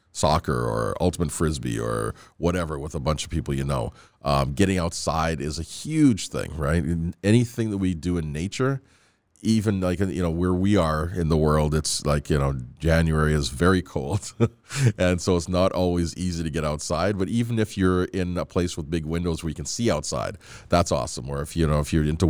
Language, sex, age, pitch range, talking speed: English, male, 40-59, 75-90 Hz, 210 wpm